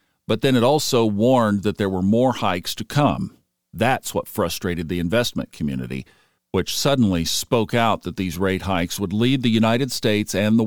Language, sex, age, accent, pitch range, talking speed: English, male, 50-69, American, 85-115 Hz, 185 wpm